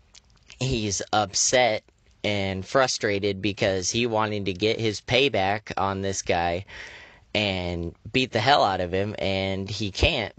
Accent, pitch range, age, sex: American, 95-115 Hz, 30-49, male